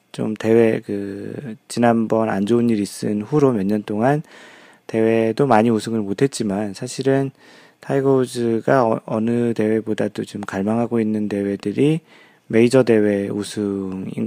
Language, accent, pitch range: Korean, native, 105-130 Hz